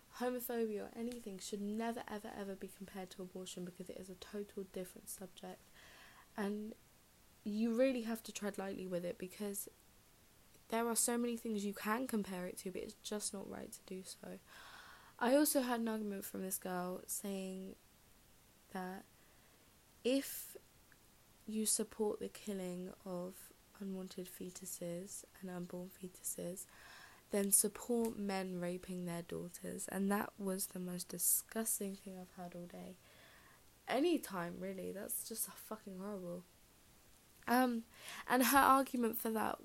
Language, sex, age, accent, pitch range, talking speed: English, female, 20-39, British, 190-230 Hz, 150 wpm